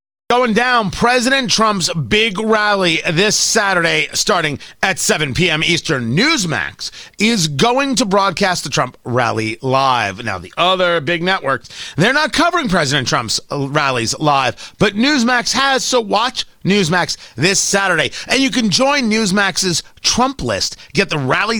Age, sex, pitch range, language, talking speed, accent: 40-59, male, 145-220 Hz, English, 145 wpm, American